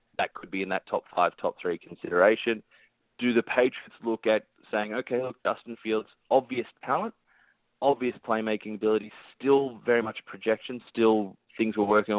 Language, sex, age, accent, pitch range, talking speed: English, male, 20-39, Australian, 100-120 Hz, 165 wpm